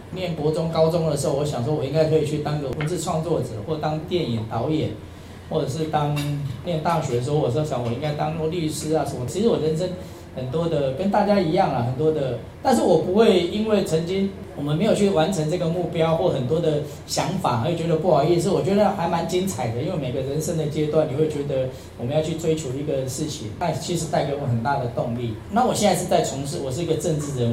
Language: Chinese